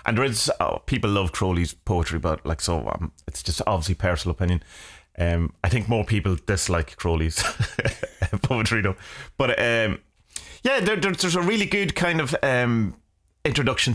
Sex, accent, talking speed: male, British, 165 wpm